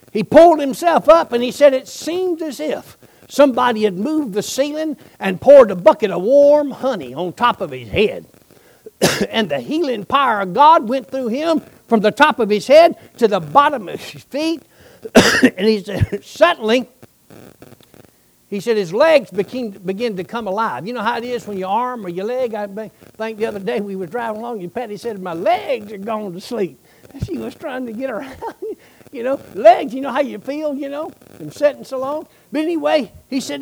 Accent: American